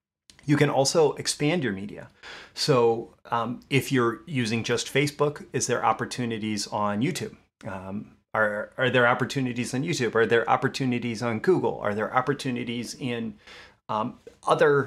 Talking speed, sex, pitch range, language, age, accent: 145 wpm, male, 115-135 Hz, English, 30-49, American